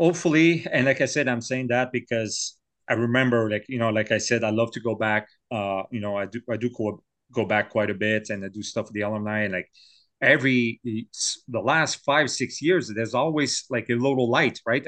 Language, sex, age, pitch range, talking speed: English, male, 30-49, 110-125 Hz, 230 wpm